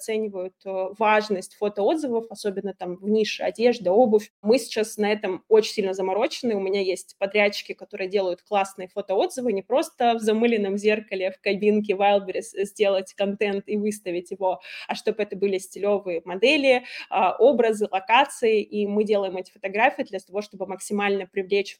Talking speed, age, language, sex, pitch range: 150 wpm, 20-39, Russian, female, 195-225 Hz